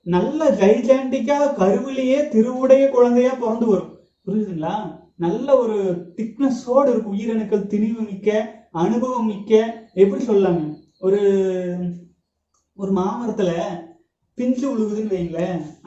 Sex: male